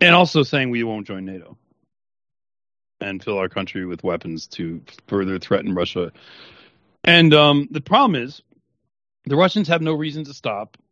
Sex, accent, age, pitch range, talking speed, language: male, American, 40-59, 110-145 Hz, 160 wpm, English